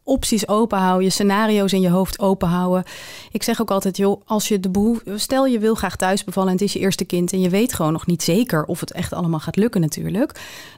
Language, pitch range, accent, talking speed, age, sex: Dutch, 175-205 Hz, Dutch, 250 wpm, 30-49, female